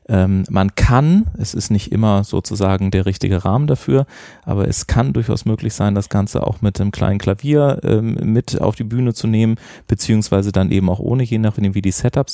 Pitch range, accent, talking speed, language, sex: 105-120 Hz, German, 200 wpm, German, male